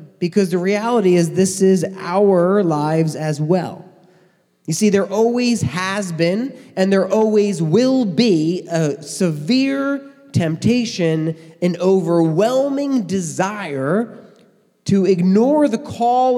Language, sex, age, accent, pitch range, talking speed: English, male, 30-49, American, 150-195 Hz, 115 wpm